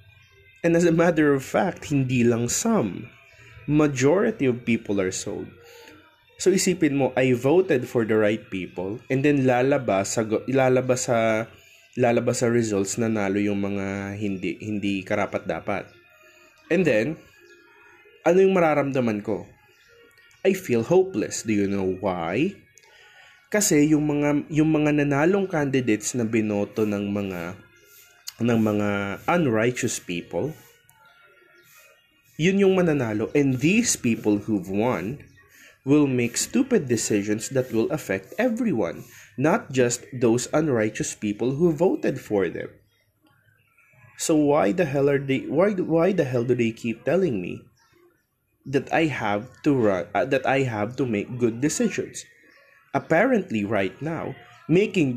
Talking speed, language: 135 wpm, Filipino